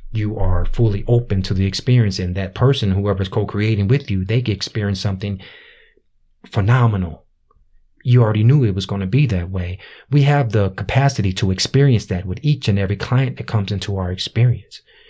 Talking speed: 185 wpm